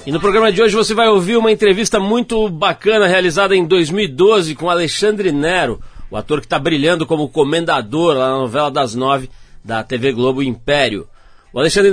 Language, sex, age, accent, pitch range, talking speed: Portuguese, male, 40-59, Brazilian, 135-175 Hz, 180 wpm